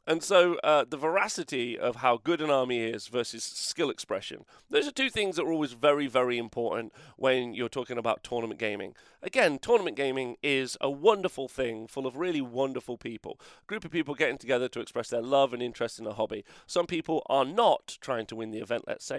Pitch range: 120-160 Hz